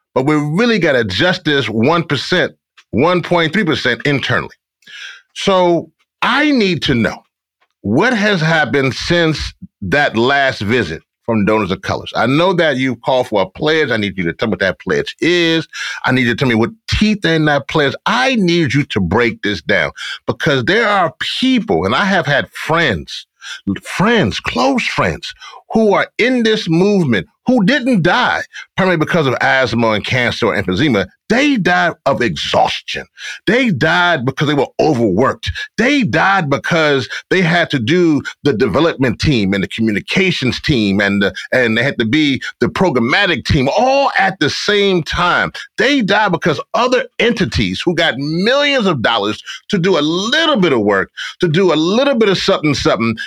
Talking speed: 175 wpm